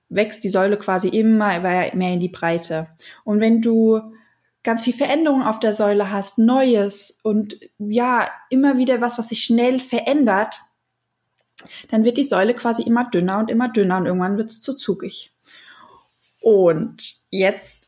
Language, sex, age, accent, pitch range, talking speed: German, female, 20-39, German, 210-260 Hz, 160 wpm